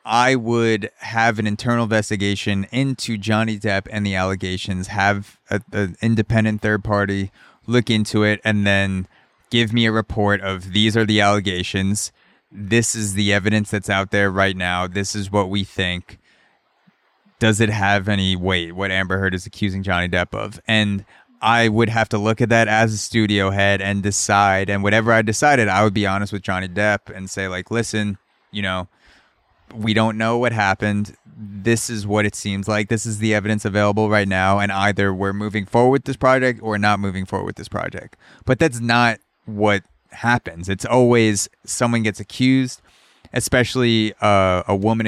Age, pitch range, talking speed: 20-39, 100-115 Hz, 180 wpm